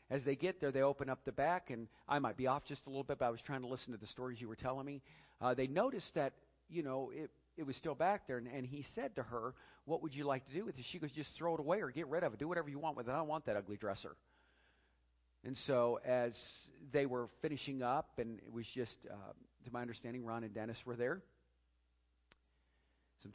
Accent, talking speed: American, 260 wpm